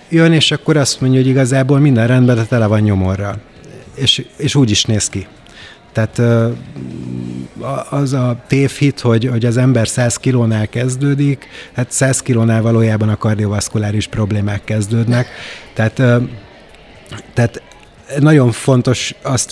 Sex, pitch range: male, 110-125 Hz